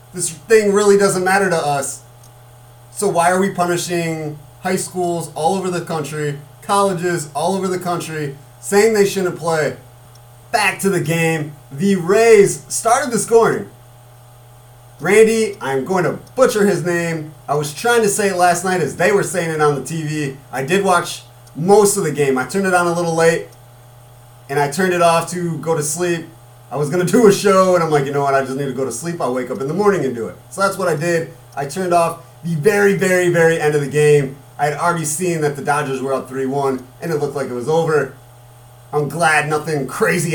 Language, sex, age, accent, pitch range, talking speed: English, male, 30-49, American, 135-185 Hz, 220 wpm